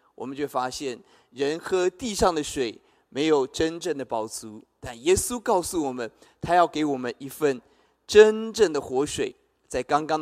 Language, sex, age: Chinese, male, 20-39